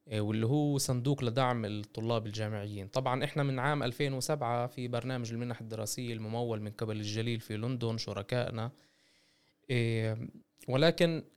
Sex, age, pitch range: male, 20-39, 110-145 Hz